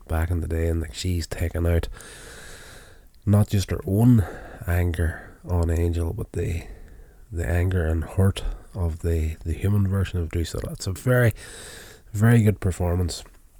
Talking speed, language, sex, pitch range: 155 wpm, English, male, 80-95 Hz